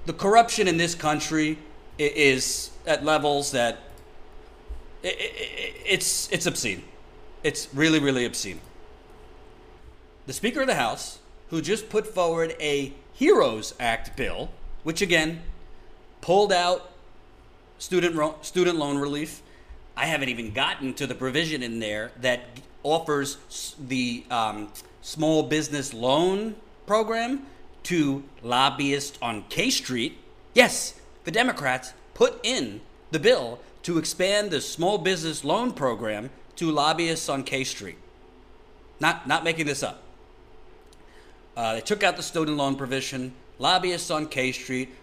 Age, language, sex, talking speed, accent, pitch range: 40-59, English, male, 130 wpm, American, 135-175 Hz